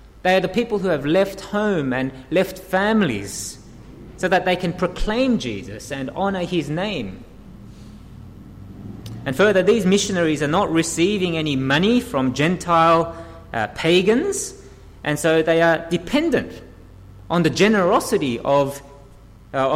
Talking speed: 135 wpm